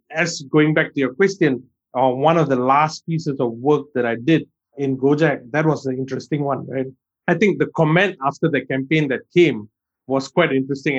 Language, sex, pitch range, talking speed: English, male, 130-155 Hz, 200 wpm